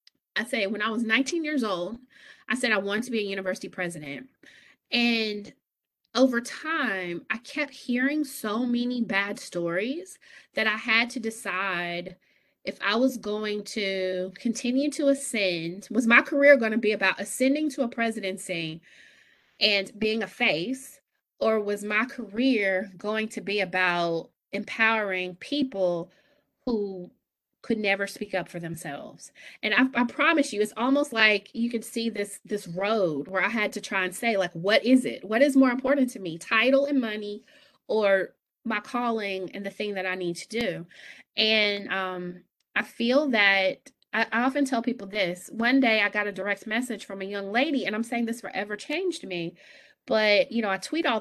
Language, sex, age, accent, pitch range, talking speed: English, female, 30-49, American, 195-250 Hz, 180 wpm